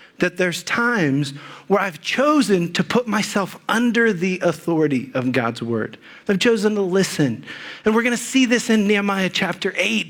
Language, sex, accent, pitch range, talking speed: English, male, American, 175-235 Hz, 170 wpm